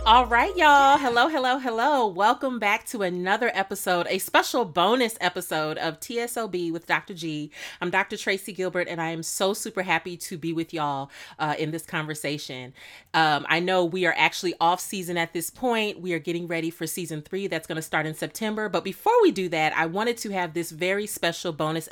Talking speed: 205 wpm